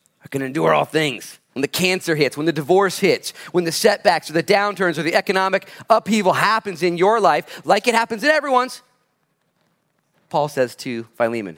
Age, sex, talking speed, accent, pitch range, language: 30-49, male, 185 wpm, American, 100-160 Hz, English